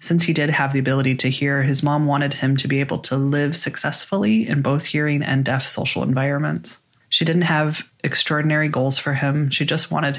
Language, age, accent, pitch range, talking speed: English, 30-49, American, 135-160 Hz, 205 wpm